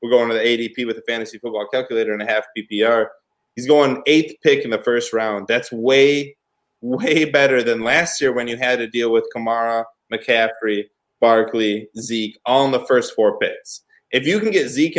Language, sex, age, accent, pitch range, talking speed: English, male, 20-39, American, 120-150 Hz, 200 wpm